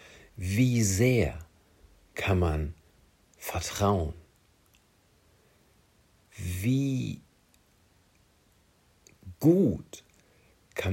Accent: German